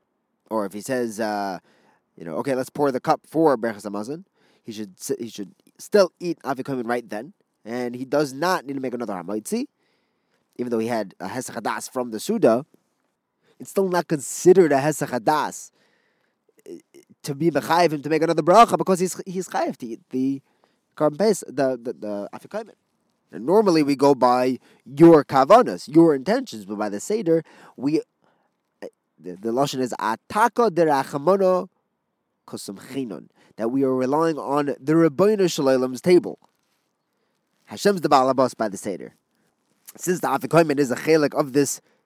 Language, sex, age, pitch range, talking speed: English, male, 20-39, 120-170 Hz, 155 wpm